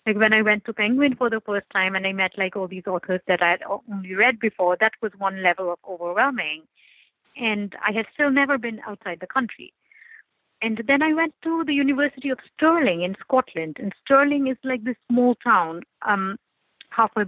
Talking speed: 200 wpm